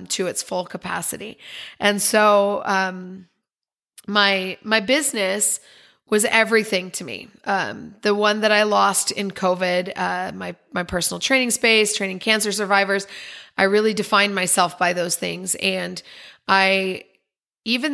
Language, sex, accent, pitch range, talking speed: English, female, American, 195-225 Hz, 135 wpm